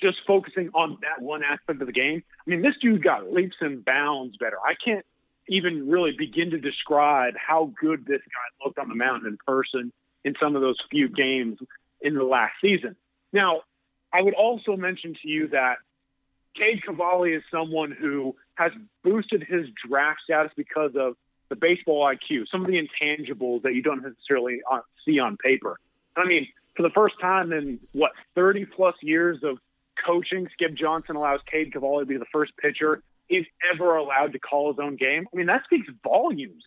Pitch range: 140-180 Hz